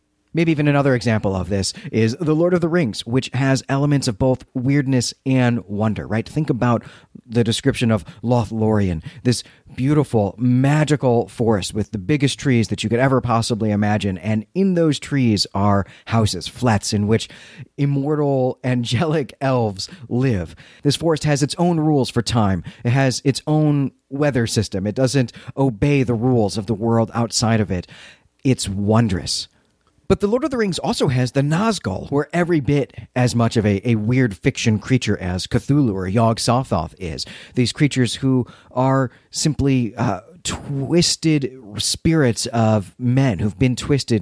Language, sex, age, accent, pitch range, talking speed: English, male, 40-59, American, 105-140 Hz, 165 wpm